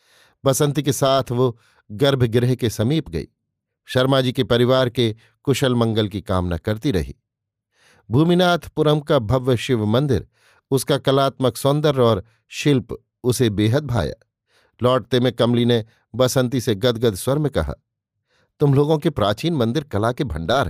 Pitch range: 115-150 Hz